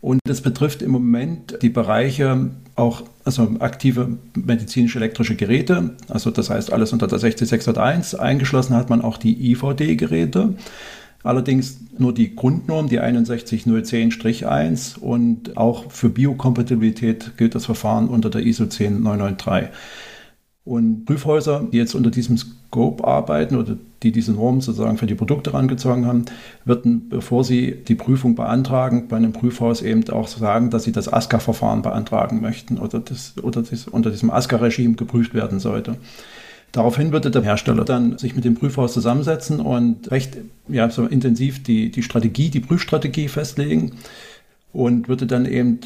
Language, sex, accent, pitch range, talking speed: German, male, German, 115-130 Hz, 150 wpm